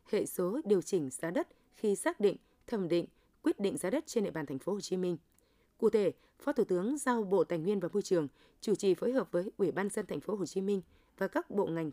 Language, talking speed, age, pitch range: Vietnamese, 260 wpm, 20-39, 180-245 Hz